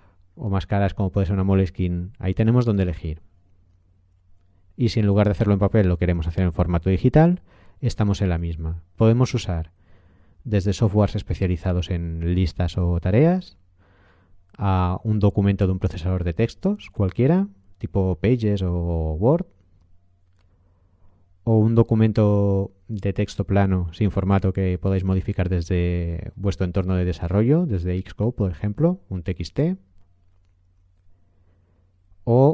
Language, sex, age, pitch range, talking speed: Spanish, male, 30-49, 90-105 Hz, 140 wpm